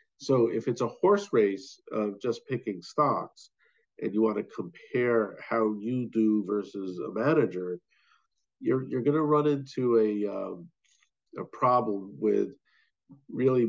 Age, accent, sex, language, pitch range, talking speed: 50-69, American, male, English, 105-130 Hz, 145 wpm